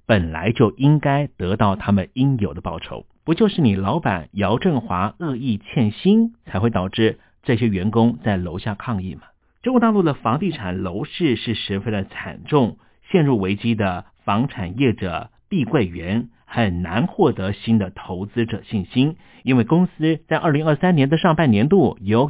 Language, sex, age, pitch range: Chinese, male, 50-69, 100-145 Hz